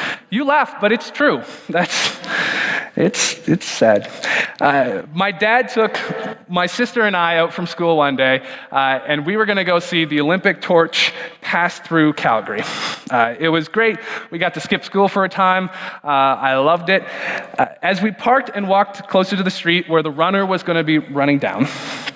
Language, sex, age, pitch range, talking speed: English, male, 20-39, 155-195 Hz, 190 wpm